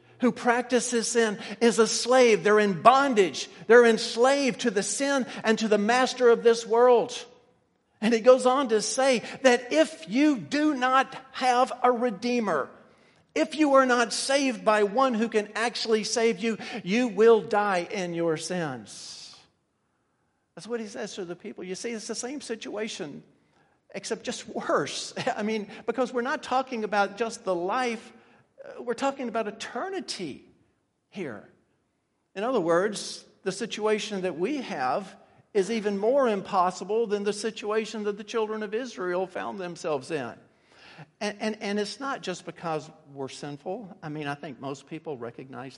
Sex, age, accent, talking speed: male, 50-69, American, 160 wpm